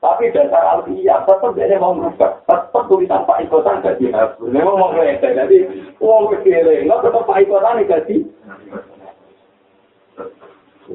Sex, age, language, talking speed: male, 50-69, Malay, 70 wpm